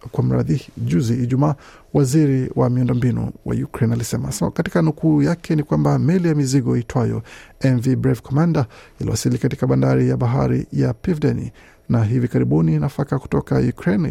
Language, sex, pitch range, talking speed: Swahili, male, 115-140 Hz, 150 wpm